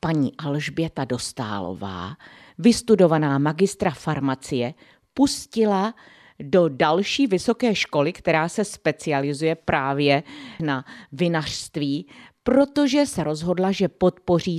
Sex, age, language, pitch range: female, 50-69, Czech, 140-180 Hz